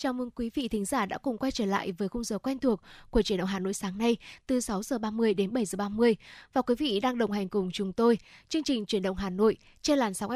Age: 10-29